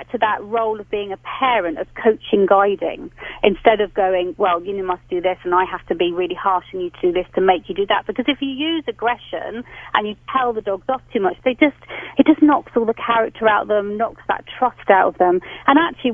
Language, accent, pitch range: English, British, 185-235 Hz